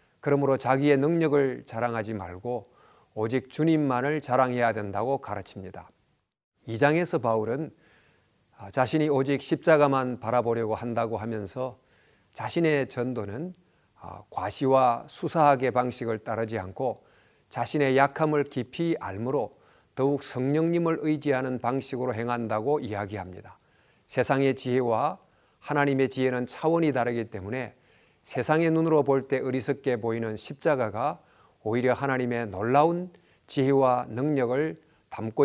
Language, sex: Korean, male